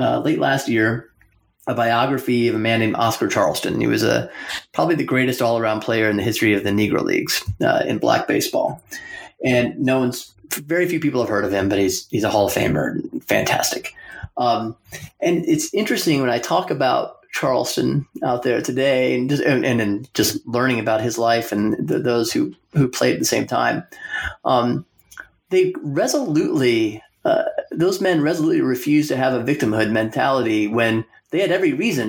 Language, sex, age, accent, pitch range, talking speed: English, male, 30-49, American, 110-135 Hz, 190 wpm